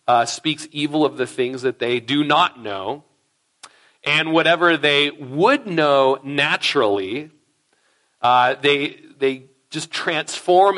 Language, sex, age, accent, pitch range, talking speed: English, male, 40-59, American, 135-195 Hz, 120 wpm